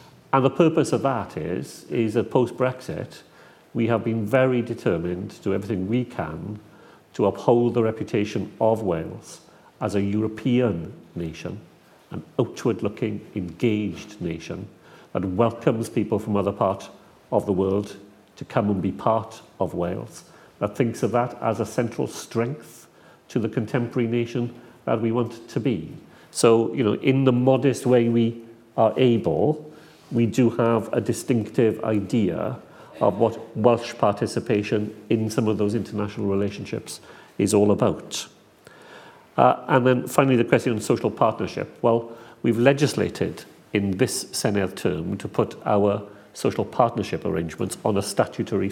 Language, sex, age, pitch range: English, male, 40-59, 105-125 Hz